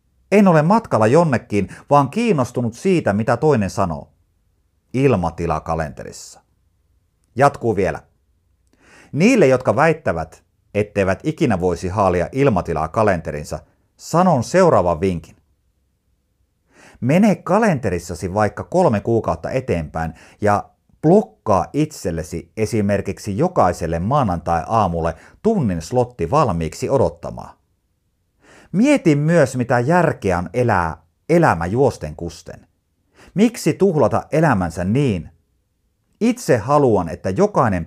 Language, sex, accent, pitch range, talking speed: Finnish, male, native, 85-135 Hz, 95 wpm